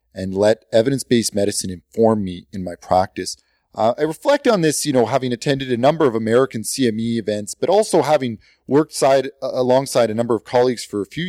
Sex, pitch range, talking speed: male, 100-130 Hz, 195 wpm